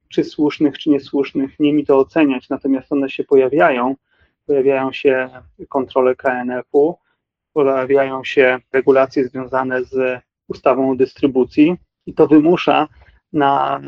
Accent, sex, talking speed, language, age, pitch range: native, male, 120 wpm, Polish, 30-49, 135-160 Hz